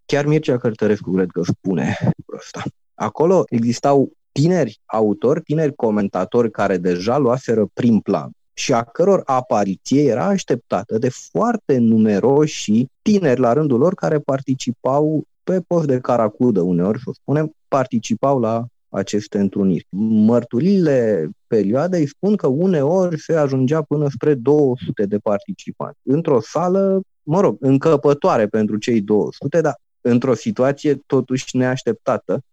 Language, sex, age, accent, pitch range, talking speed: Romanian, male, 30-49, native, 105-145 Hz, 125 wpm